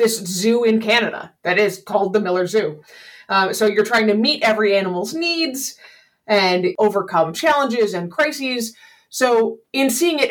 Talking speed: 165 wpm